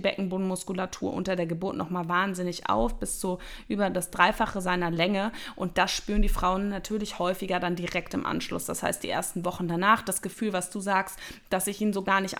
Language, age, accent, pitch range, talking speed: German, 20-39, German, 175-210 Hz, 210 wpm